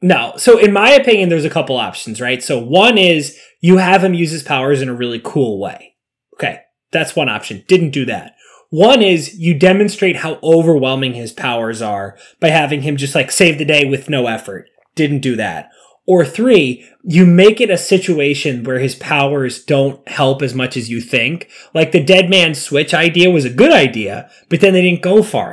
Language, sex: English, male